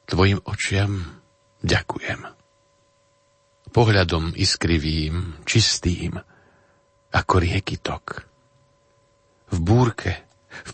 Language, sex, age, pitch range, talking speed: Slovak, male, 50-69, 95-115 Hz, 65 wpm